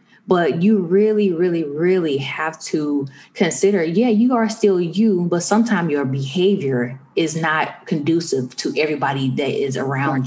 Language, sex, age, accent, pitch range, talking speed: English, female, 20-39, American, 150-210 Hz, 145 wpm